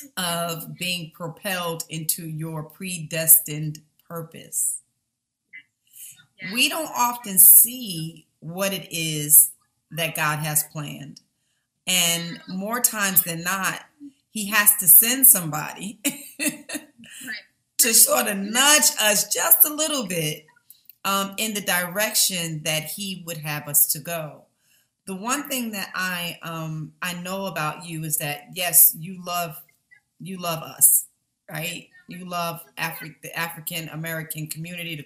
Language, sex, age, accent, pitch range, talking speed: English, female, 40-59, American, 160-210 Hz, 125 wpm